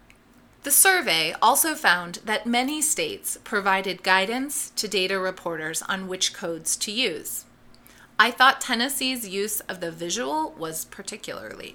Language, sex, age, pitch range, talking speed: English, female, 30-49, 185-255 Hz, 135 wpm